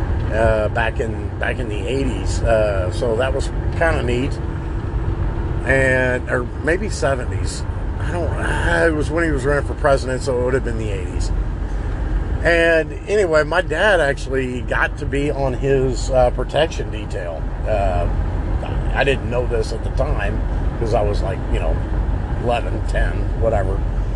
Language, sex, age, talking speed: English, male, 50-69, 165 wpm